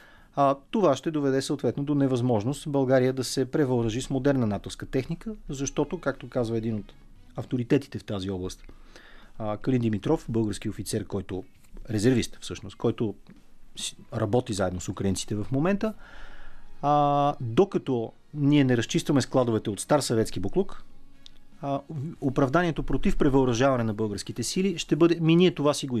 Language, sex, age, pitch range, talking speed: Bulgarian, male, 40-59, 110-165 Hz, 145 wpm